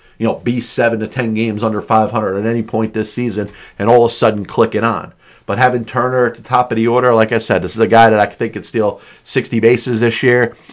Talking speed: 255 wpm